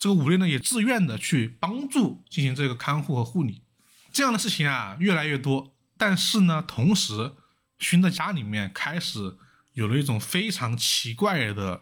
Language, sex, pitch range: Chinese, male, 115-175 Hz